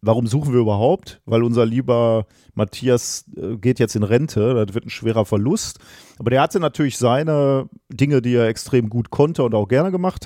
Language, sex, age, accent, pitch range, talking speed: German, male, 40-59, German, 105-130 Hz, 185 wpm